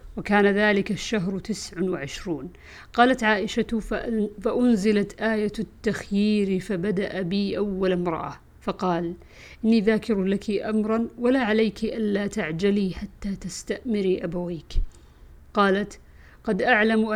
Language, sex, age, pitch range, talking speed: Arabic, female, 50-69, 185-220 Hz, 100 wpm